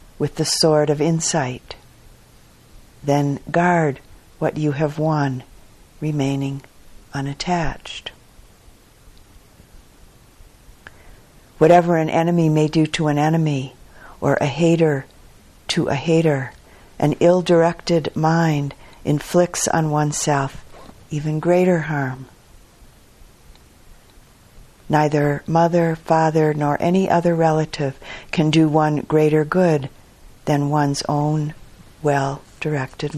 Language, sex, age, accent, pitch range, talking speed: English, female, 50-69, American, 140-165 Hz, 95 wpm